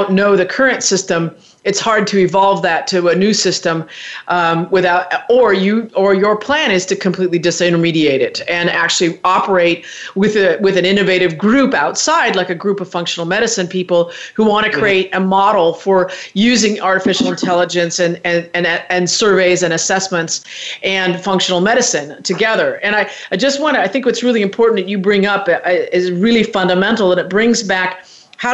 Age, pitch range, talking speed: 40-59, 180-225 Hz, 180 wpm